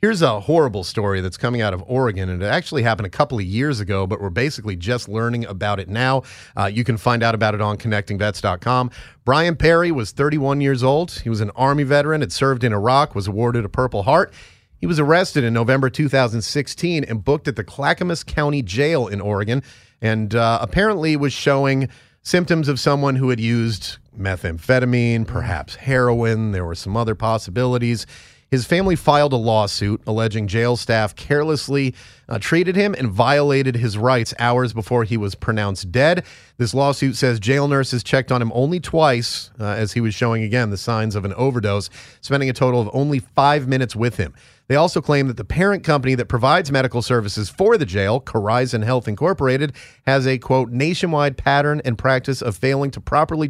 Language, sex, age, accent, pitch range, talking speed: English, male, 30-49, American, 110-140 Hz, 190 wpm